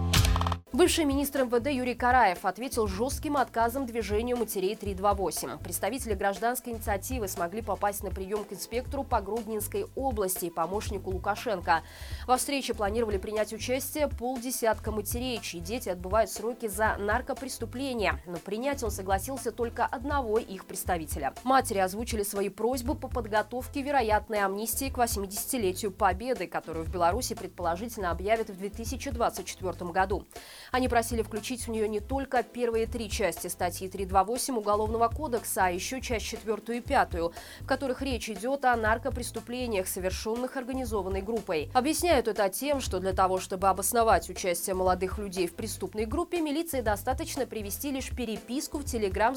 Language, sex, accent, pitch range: Russian, female, native, 195-255 Hz